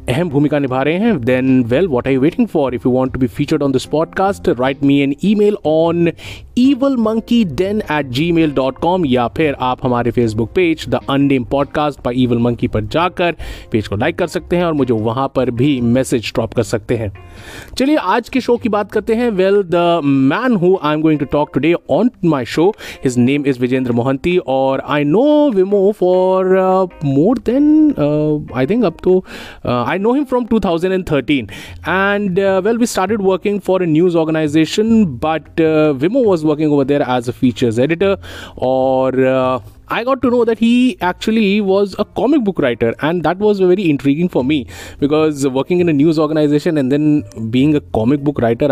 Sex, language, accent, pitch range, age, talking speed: male, Hindi, native, 130-185 Hz, 30-49, 185 wpm